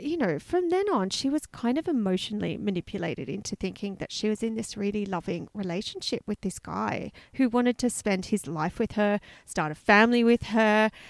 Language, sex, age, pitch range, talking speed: English, female, 30-49, 195-265 Hz, 200 wpm